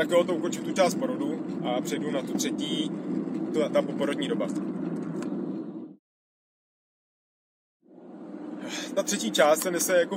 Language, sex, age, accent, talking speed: Czech, male, 30-49, native, 130 wpm